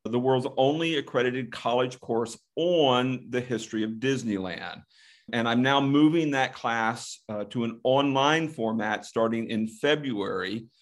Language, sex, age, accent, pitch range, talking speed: English, male, 40-59, American, 110-130 Hz, 140 wpm